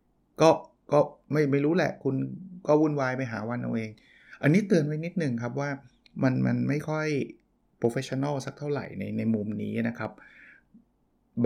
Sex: male